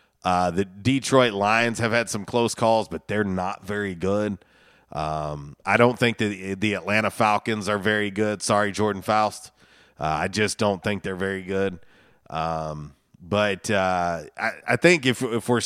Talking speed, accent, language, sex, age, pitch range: 175 wpm, American, English, male, 30-49, 100-125 Hz